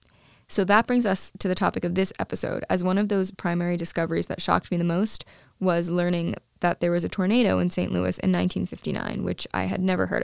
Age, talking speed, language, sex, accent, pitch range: 20-39, 225 wpm, English, female, American, 170-195 Hz